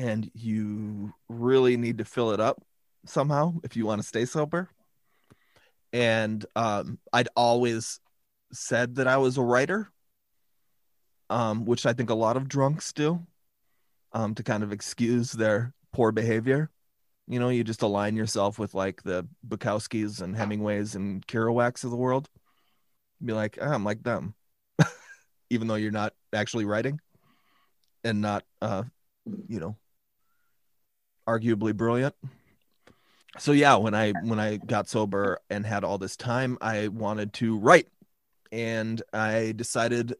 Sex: male